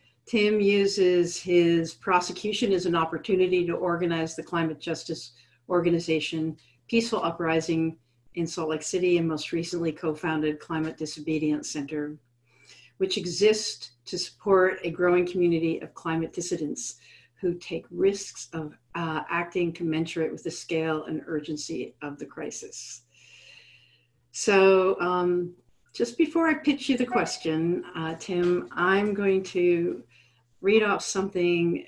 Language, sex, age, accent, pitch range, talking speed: English, female, 50-69, American, 155-190 Hz, 130 wpm